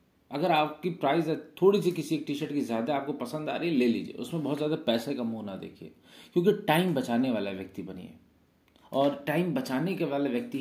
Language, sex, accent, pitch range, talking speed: Hindi, male, native, 115-165 Hz, 220 wpm